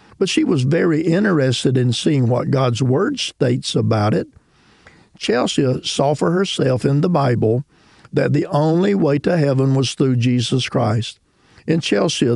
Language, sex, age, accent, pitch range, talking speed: English, male, 50-69, American, 125-155 Hz, 155 wpm